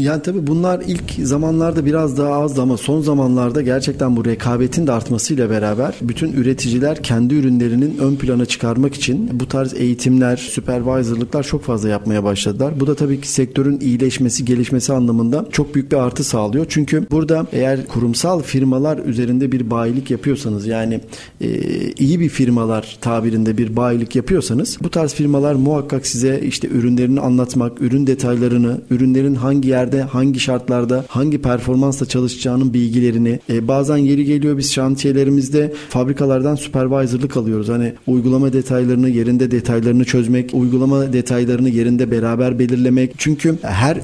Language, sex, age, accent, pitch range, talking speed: Turkish, male, 40-59, native, 125-140 Hz, 140 wpm